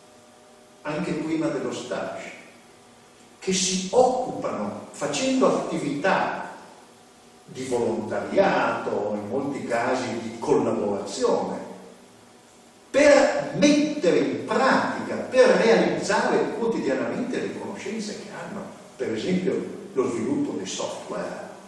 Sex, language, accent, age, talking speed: male, Italian, native, 50-69, 90 wpm